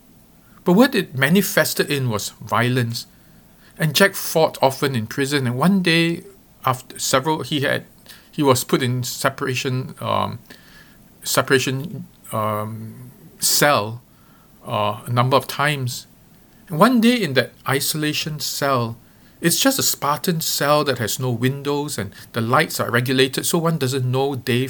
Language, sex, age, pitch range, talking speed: English, male, 50-69, 120-155 Hz, 145 wpm